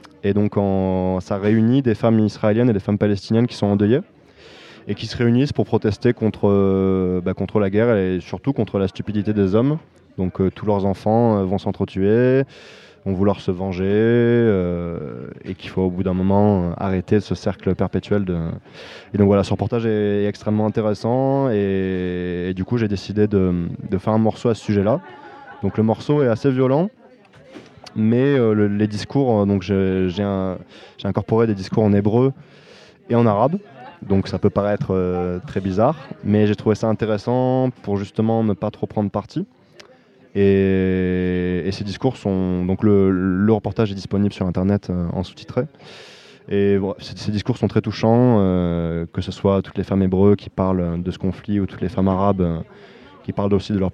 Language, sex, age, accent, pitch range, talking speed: French, male, 20-39, French, 95-110 Hz, 190 wpm